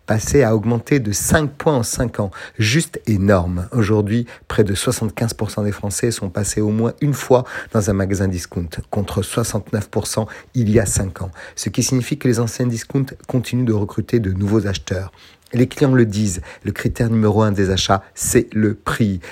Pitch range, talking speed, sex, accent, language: 100-115 Hz, 185 wpm, male, French, French